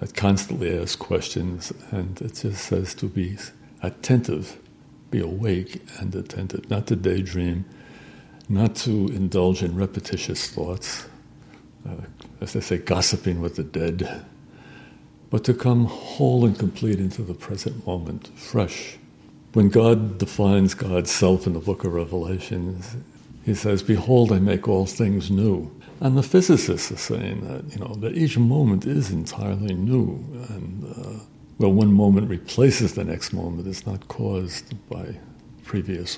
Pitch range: 95-115 Hz